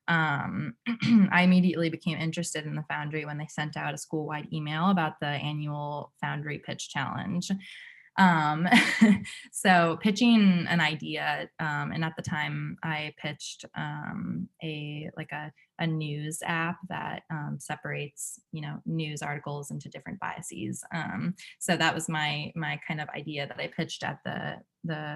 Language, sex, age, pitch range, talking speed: English, female, 20-39, 150-180 Hz, 155 wpm